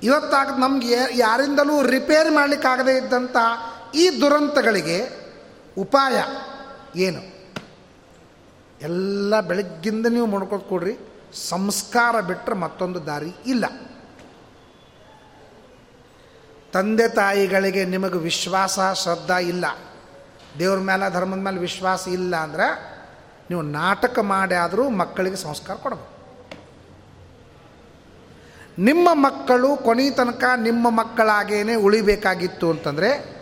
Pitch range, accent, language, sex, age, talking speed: 180-240 Hz, native, Kannada, male, 30-49, 85 wpm